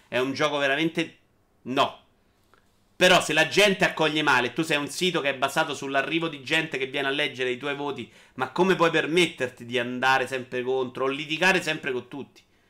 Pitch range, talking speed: 135-205 Hz, 195 wpm